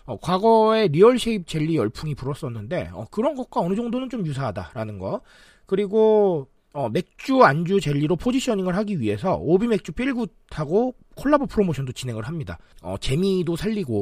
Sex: male